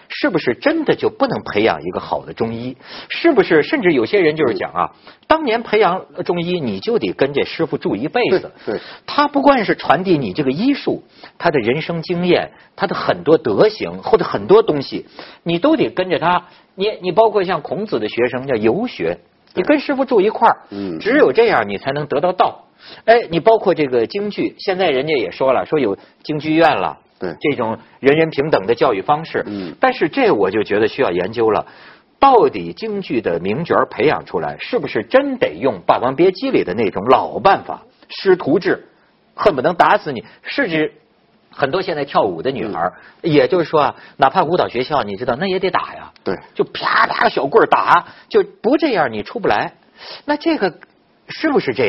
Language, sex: Chinese, male